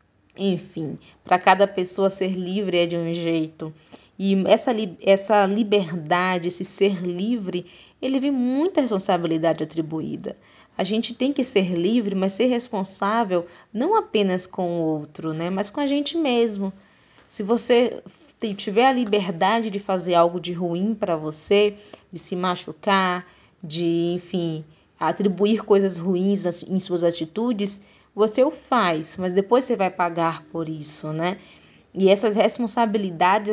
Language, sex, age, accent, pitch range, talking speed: Portuguese, female, 20-39, Brazilian, 175-220 Hz, 145 wpm